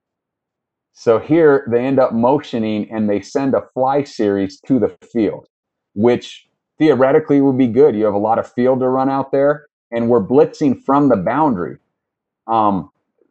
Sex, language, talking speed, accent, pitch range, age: male, English, 165 wpm, American, 105-120 Hz, 40-59